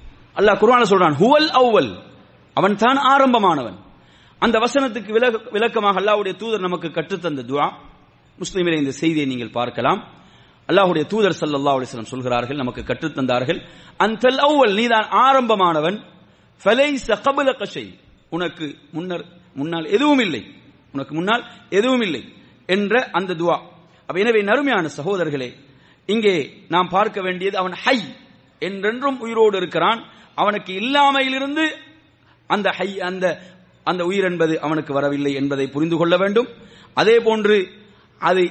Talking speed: 105 wpm